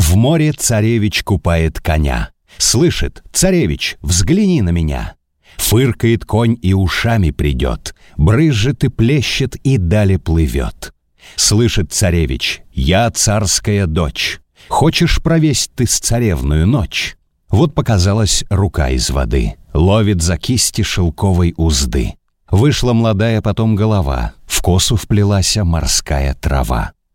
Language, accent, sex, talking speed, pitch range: Russian, native, male, 115 wpm, 80-115 Hz